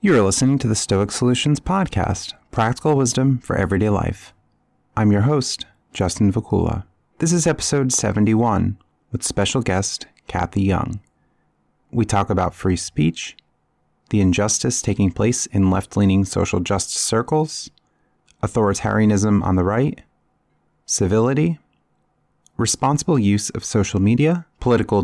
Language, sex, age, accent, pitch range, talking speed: English, male, 30-49, American, 95-120 Hz, 125 wpm